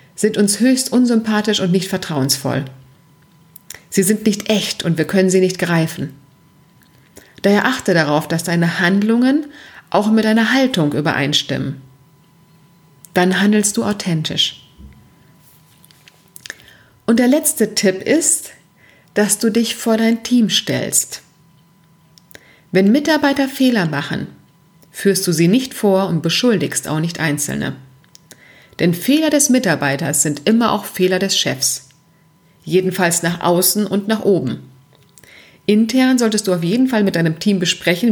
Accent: German